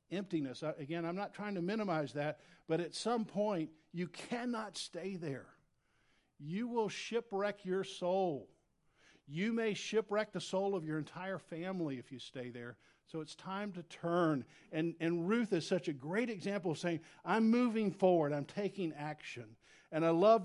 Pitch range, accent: 170-225 Hz, American